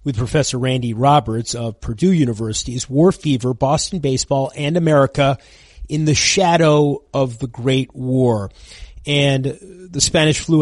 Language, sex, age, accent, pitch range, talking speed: English, male, 30-49, American, 120-150 Hz, 140 wpm